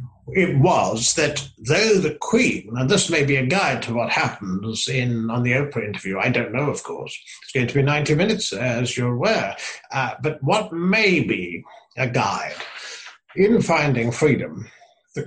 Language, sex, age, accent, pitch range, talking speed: English, male, 60-79, British, 125-165 Hz, 175 wpm